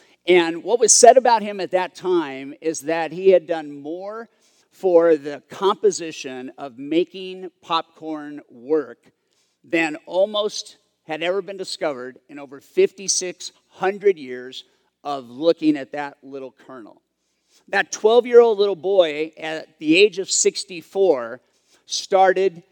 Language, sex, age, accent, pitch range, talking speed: English, male, 50-69, American, 155-210 Hz, 125 wpm